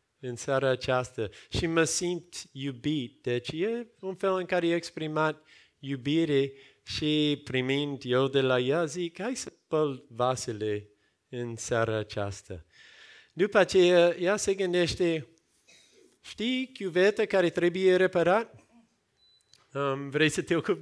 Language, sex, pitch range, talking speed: Romanian, male, 130-190 Hz, 125 wpm